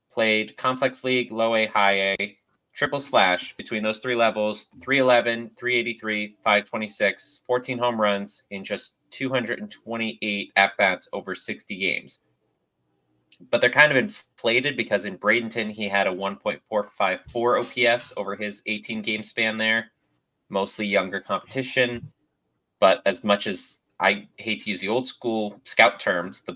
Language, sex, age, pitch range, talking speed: English, male, 30-49, 100-115 Hz, 140 wpm